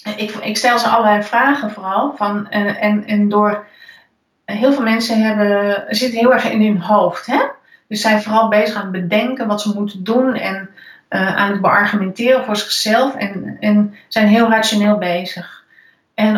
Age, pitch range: 30-49, 190-220 Hz